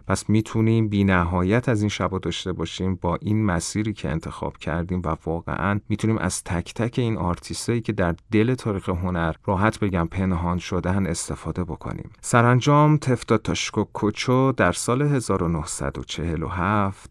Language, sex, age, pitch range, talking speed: Persian, male, 30-49, 85-110 Hz, 140 wpm